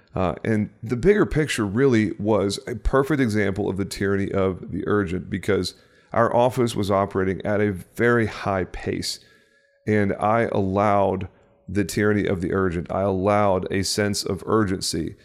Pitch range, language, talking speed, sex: 95-110 Hz, English, 155 wpm, male